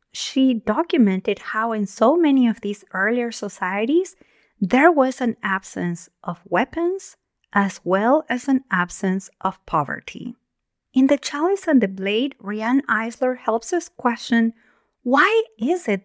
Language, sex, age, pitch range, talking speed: English, female, 30-49, 200-265 Hz, 140 wpm